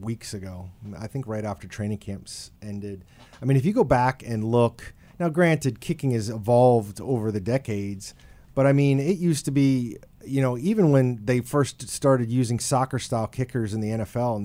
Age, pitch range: 30-49, 120-155 Hz